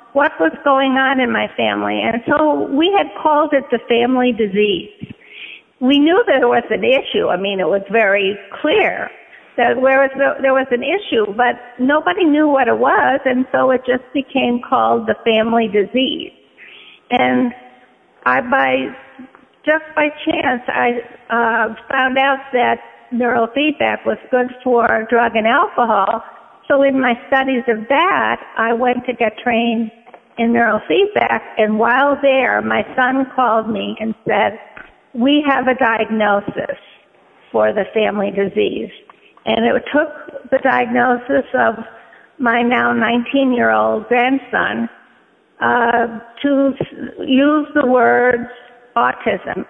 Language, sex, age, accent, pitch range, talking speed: English, female, 50-69, American, 230-270 Hz, 140 wpm